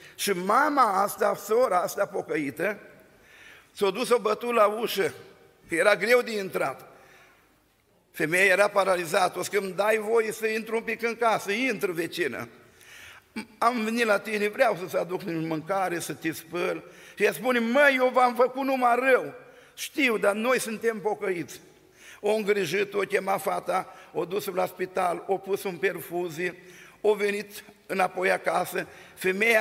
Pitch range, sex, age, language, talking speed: 180-225 Hz, male, 50-69, Romanian, 155 wpm